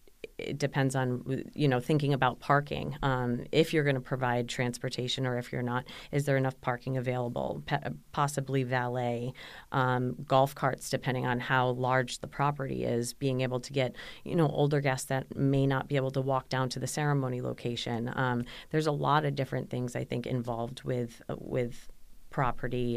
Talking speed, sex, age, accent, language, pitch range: 185 wpm, female, 30-49, American, English, 120-135 Hz